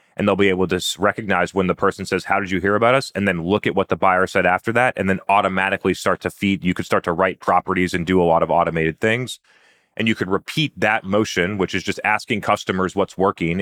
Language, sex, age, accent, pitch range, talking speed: English, male, 30-49, American, 90-105 Hz, 255 wpm